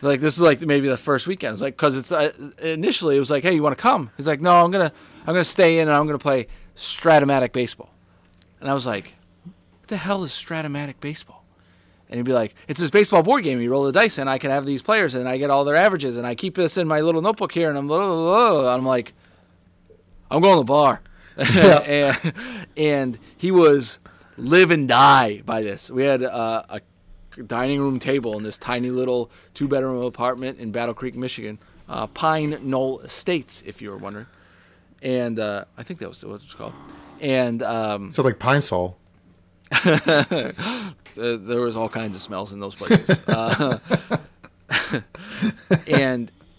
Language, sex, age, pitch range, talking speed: English, male, 20-39, 100-155 Hz, 200 wpm